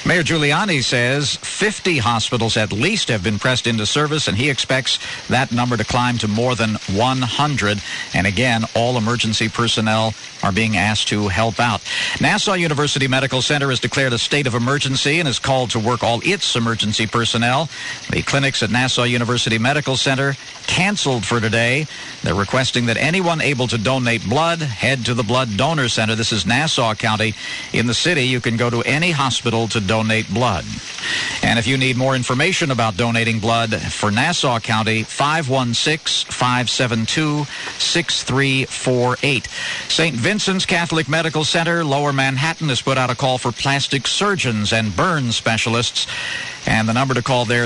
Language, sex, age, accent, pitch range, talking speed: English, male, 50-69, American, 115-140 Hz, 165 wpm